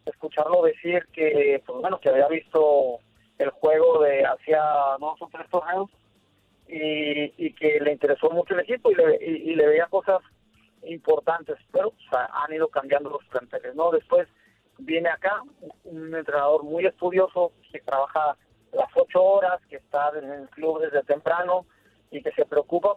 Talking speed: 170 wpm